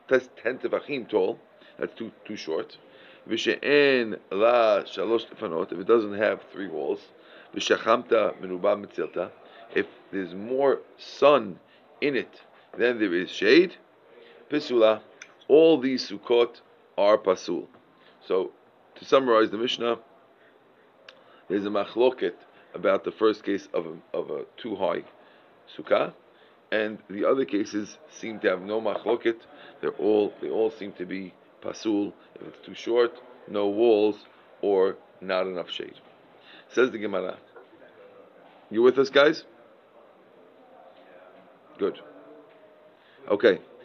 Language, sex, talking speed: English, male, 115 wpm